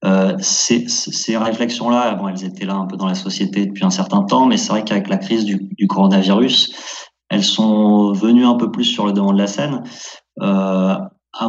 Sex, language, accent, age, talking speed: male, French, French, 30-49, 210 wpm